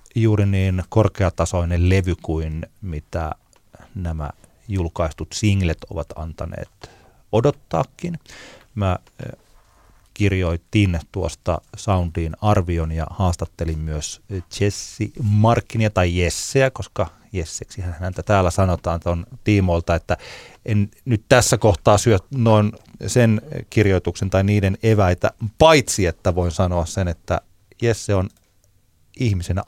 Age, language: 30-49, Finnish